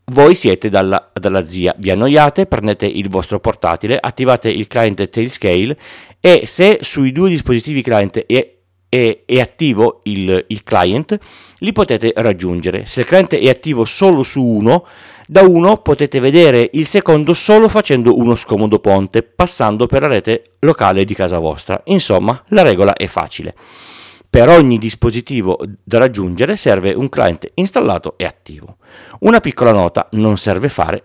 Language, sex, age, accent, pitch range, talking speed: Italian, male, 40-59, native, 100-145 Hz, 155 wpm